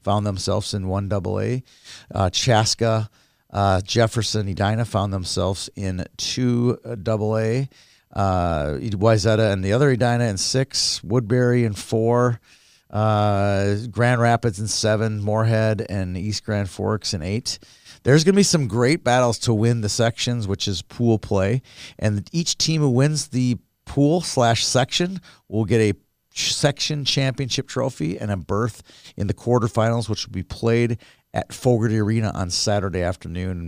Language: English